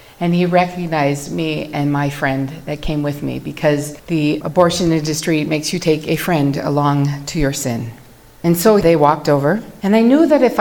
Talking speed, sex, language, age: 190 wpm, female, English, 40-59